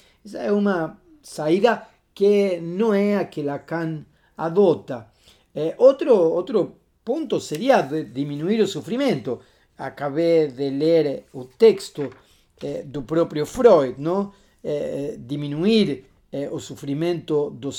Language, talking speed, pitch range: Portuguese, 120 wpm, 145-205 Hz